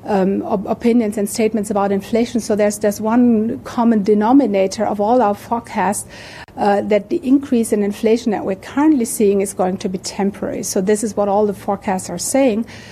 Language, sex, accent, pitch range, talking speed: English, female, German, 195-220 Hz, 190 wpm